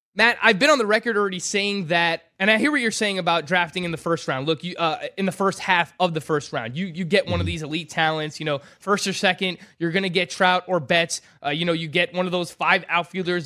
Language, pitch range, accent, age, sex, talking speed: English, 165-210 Hz, American, 20-39, male, 275 wpm